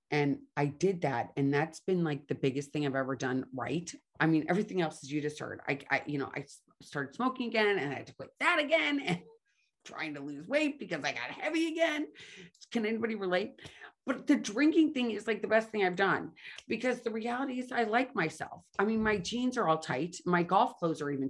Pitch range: 180-265 Hz